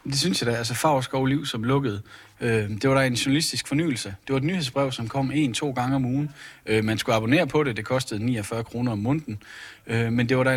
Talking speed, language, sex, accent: 250 wpm, Danish, male, native